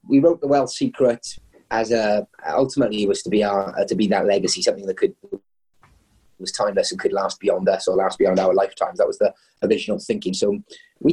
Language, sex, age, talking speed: English, male, 30-49, 215 wpm